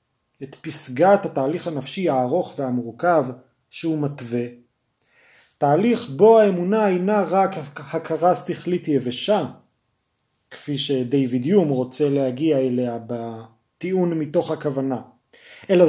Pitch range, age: 130-180 Hz, 30-49